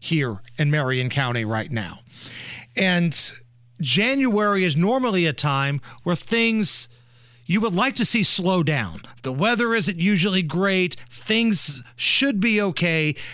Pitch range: 125-200 Hz